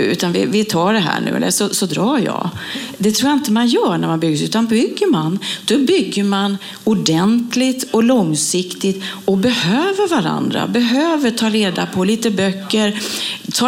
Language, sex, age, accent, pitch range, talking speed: Swedish, female, 40-59, native, 195-260 Hz, 175 wpm